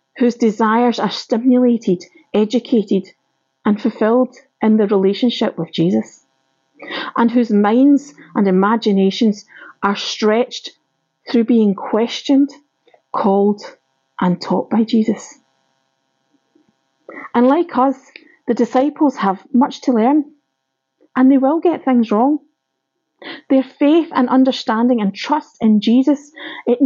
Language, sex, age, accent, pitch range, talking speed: English, female, 40-59, British, 195-270 Hz, 115 wpm